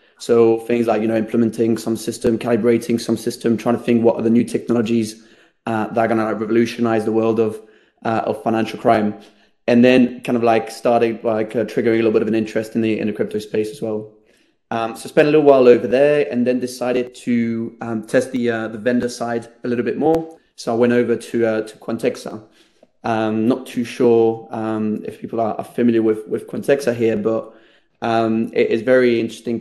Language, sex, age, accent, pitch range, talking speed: English, male, 20-39, British, 115-120 Hz, 220 wpm